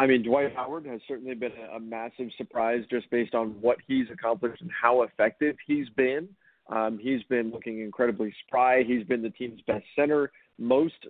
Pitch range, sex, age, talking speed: 120-140 Hz, male, 40-59, 185 wpm